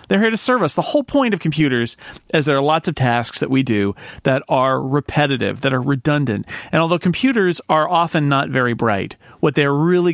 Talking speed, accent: 215 wpm, American